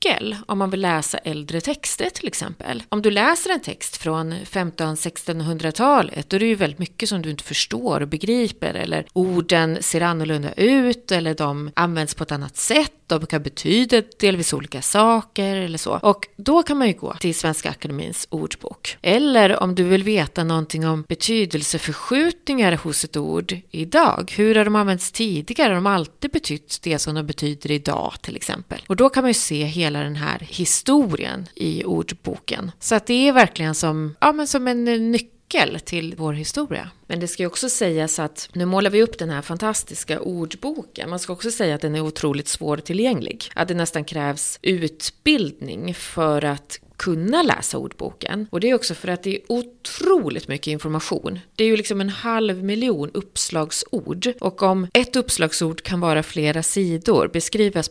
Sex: female